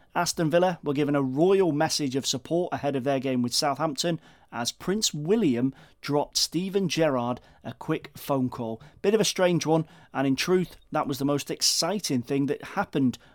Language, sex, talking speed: English, male, 185 wpm